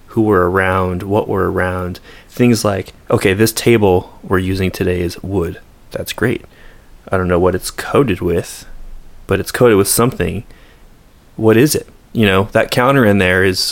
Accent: American